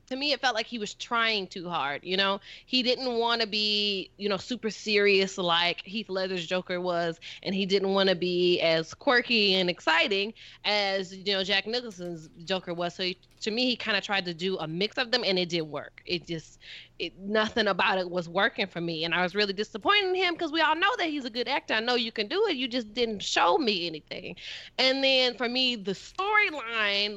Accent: American